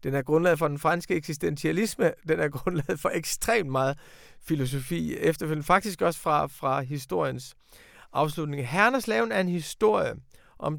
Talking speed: 145 wpm